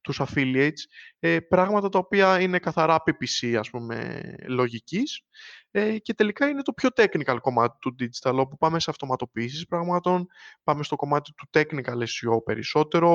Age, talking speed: 20-39, 145 wpm